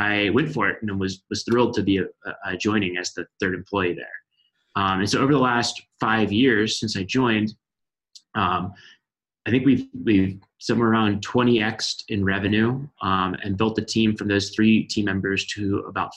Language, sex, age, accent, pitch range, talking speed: English, male, 20-39, American, 95-110 Hz, 195 wpm